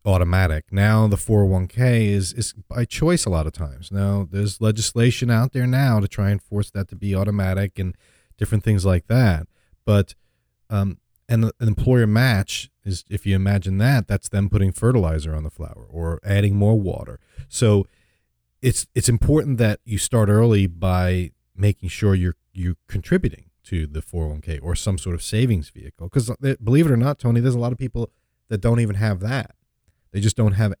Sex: male